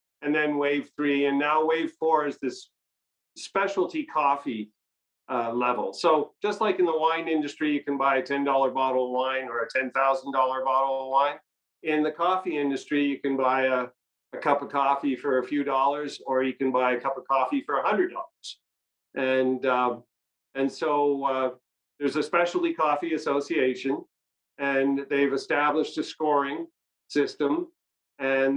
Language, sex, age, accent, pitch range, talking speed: English, male, 50-69, American, 130-155 Hz, 170 wpm